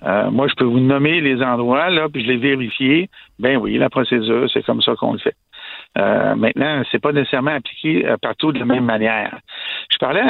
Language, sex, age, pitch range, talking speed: French, male, 60-79, 130-155 Hz, 205 wpm